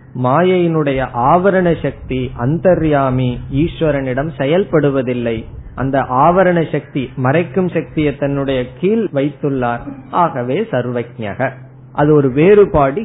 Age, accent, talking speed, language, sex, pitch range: 20-39, native, 85 wpm, Tamil, male, 130-165 Hz